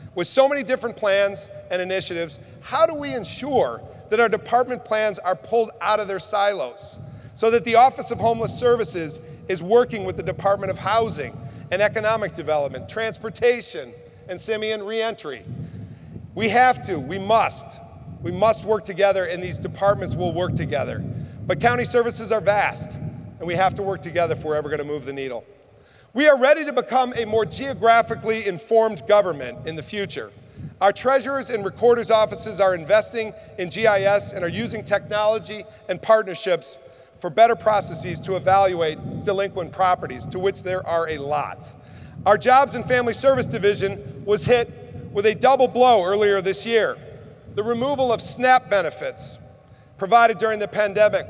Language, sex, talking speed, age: English, male, 165 wpm, 40-59